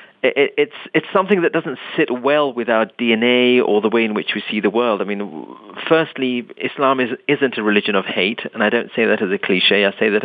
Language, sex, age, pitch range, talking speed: English, male, 30-49, 100-125 Hz, 235 wpm